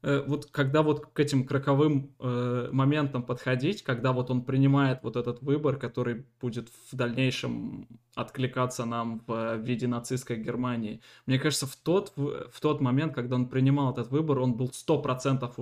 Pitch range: 125-140 Hz